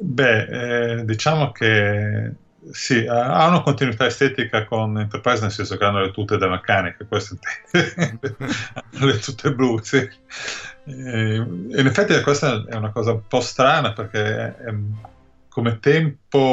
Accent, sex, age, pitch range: native, male, 20-39, 100-120 Hz